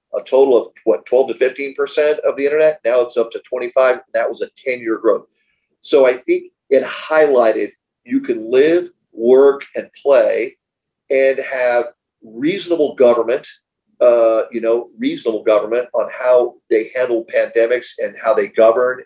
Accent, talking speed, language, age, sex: American, 155 wpm, English, 40-59, male